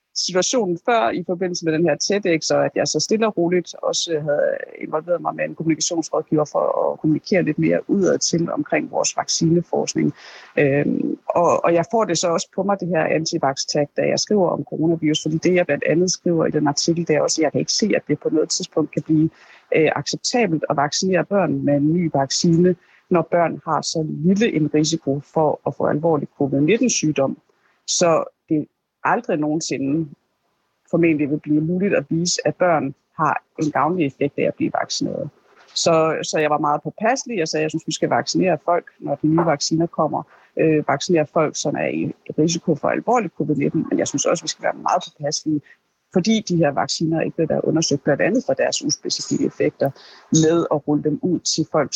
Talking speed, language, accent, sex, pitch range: 200 wpm, Danish, native, female, 150-180 Hz